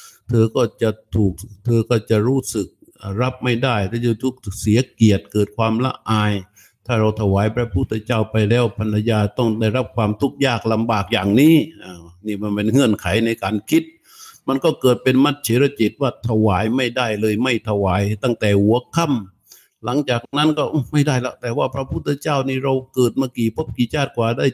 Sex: male